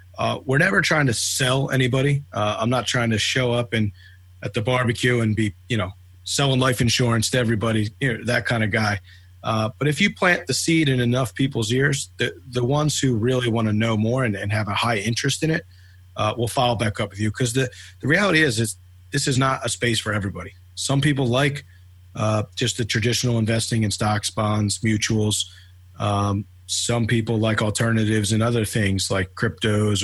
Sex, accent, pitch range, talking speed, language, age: male, American, 105-125 Hz, 205 wpm, English, 30-49